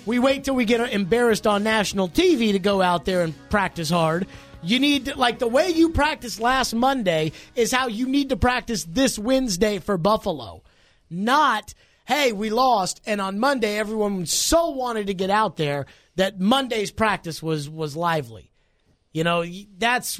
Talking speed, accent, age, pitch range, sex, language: 175 wpm, American, 30-49, 155-220 Hz, male, English